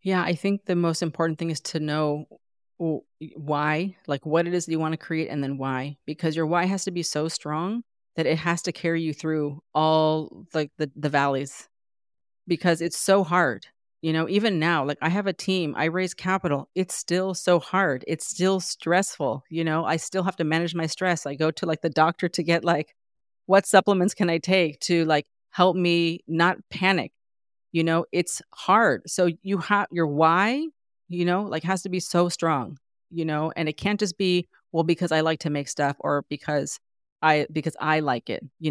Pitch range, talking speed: 155-185 Hz, 210 wpm